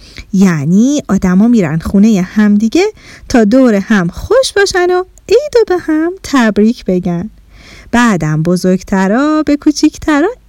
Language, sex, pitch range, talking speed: Persian, female, 210-305 Hz, 130 wpm